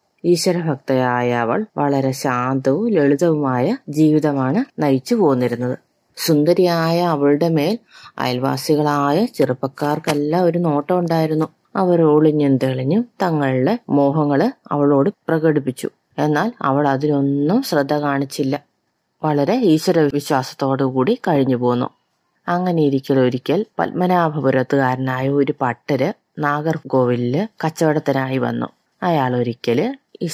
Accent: native